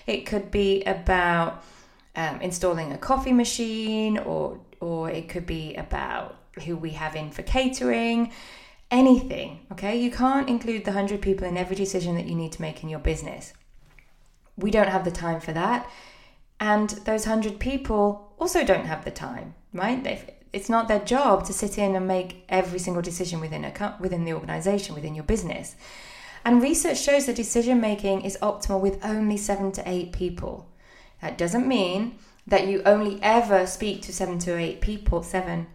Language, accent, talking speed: English, British, 175 wpm